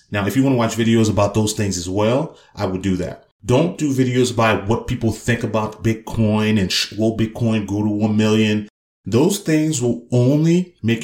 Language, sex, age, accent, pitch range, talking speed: English, male, 30-49, American, 100-125 Hz, 200 wpm